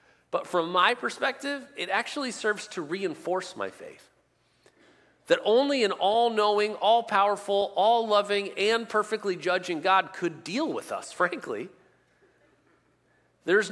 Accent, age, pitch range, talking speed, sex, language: American, 40-59, 125-205 Hz, 120 wpm, male, English